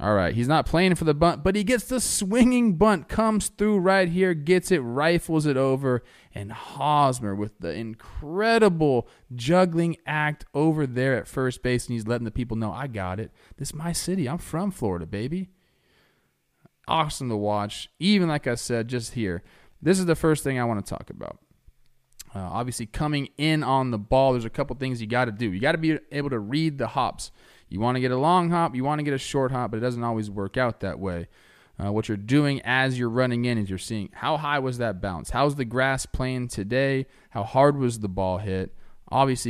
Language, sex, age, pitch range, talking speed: English, male, 20-39, 115-155 Hz, 220 wpm